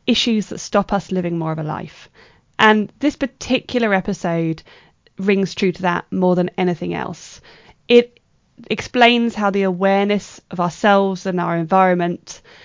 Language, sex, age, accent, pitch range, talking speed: English, female, 20-39, British, 170-210 Hz, 145 wpm